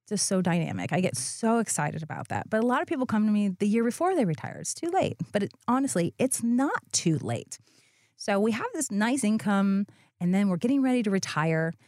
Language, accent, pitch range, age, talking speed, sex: English, American, 160-230 Hz, 30-49, 225 wpm, female